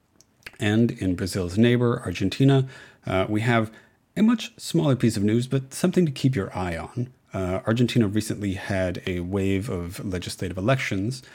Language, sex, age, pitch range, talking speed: English, male, 30-49, 95-120 Hz, 160 wpm